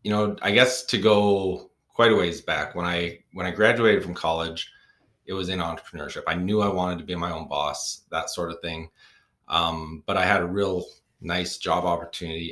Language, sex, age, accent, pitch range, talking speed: English, male, 30-49, American, 85-105 Hz, 205 wpm